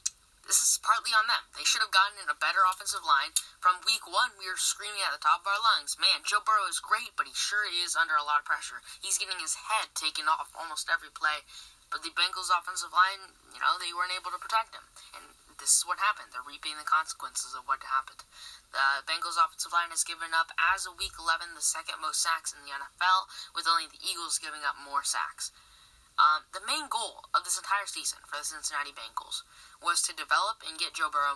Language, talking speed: English, 230 wpm